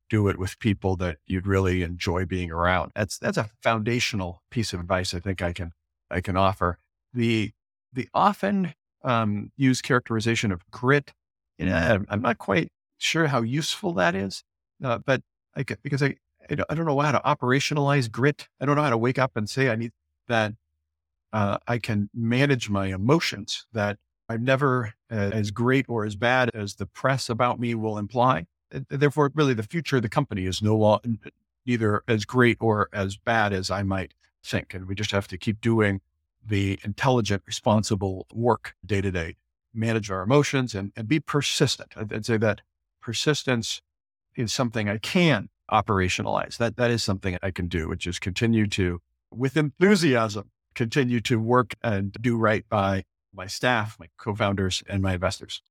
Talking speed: 175 wpm